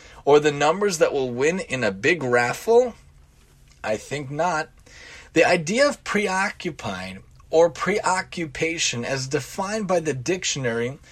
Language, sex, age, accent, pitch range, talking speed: English, male, 30-49, American, 130-195 Hz, 130 wpm